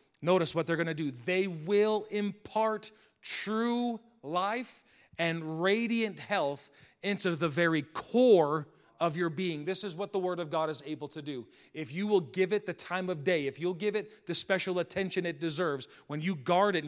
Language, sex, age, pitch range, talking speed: English, male, 40-59, 155-190 Hz, 200 wpm